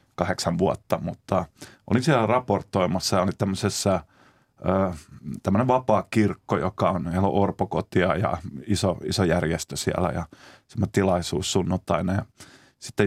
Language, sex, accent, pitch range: Finnish, male, native, 90-105 Hz